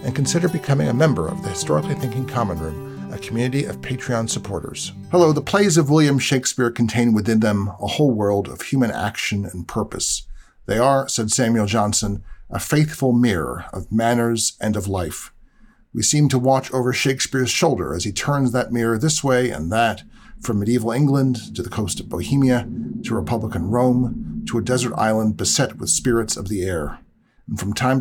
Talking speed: 185 wpm